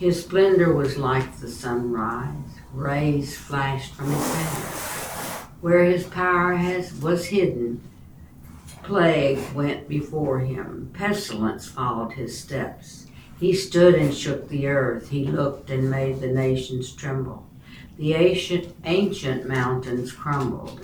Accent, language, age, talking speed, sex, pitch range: American, English, 60-79, 120 wpm, female, 130-170 Hz